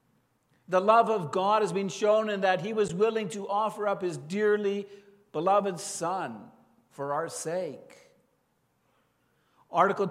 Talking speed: 135 wpm